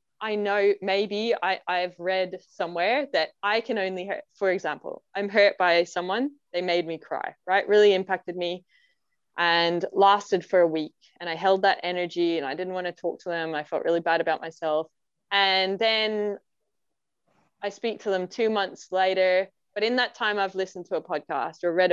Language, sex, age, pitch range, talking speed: English, female, 20-39, 170-210 Hz, 190 wpm